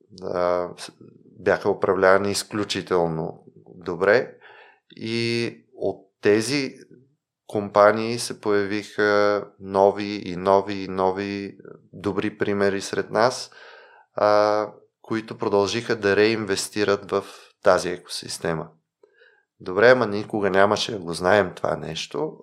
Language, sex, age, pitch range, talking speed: Bulgarian, male, 20-39, 100-115 Hz, 95 wpm